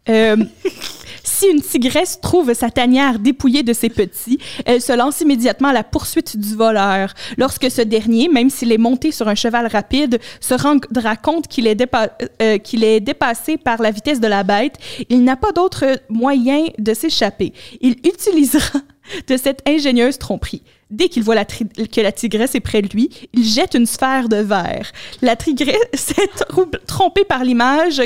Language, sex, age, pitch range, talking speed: French, female, 20-39, 235-305 Hz, 185 wpm